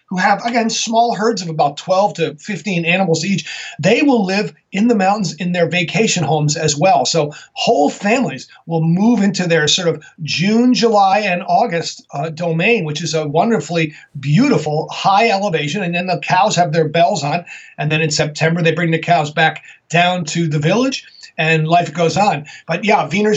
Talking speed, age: 190 wpm, 40-59